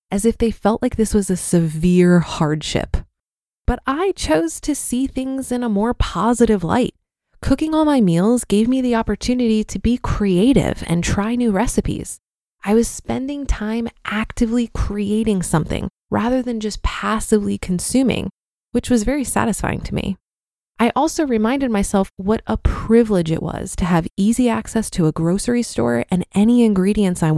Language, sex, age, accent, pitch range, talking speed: English, female, 20-39, American, 185-235 Hz, 165 wpm